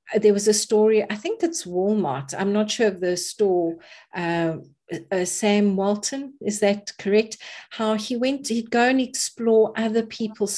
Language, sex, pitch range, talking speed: English, female, 165-220 Hz, 170 wpm